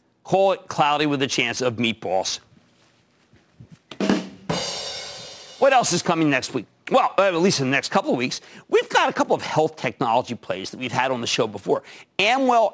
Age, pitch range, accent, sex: 50-69, 135-185 Hz, American, male